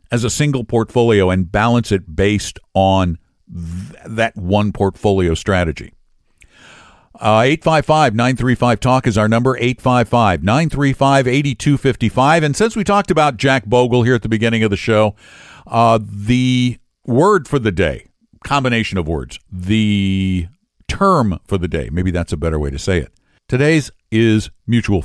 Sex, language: male, English